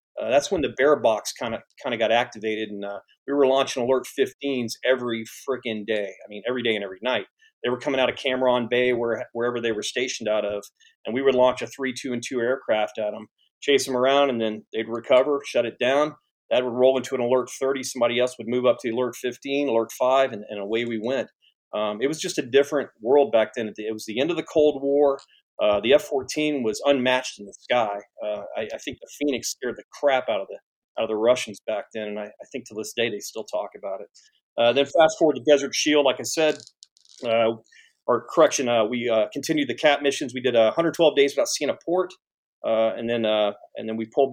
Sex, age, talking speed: male, 40-59, 240 wpm